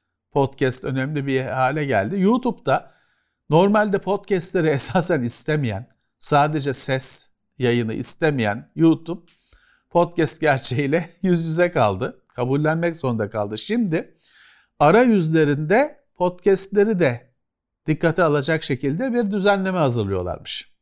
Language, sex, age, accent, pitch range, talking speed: Turkish, male, 50-69, native, 125-175 Hz, 100 wpm